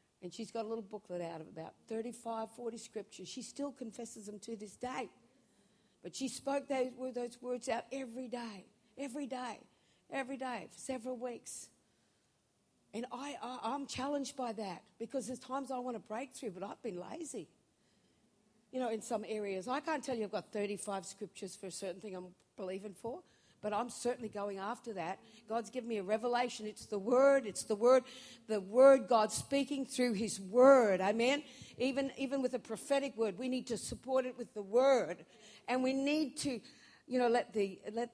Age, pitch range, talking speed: 60-79, 215-265 Hz, 190 wpm